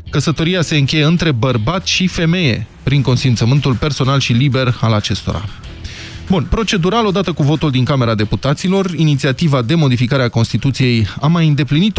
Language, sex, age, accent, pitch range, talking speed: Romanian, male, 20-39, native, 115-160 Hz, 150 wpm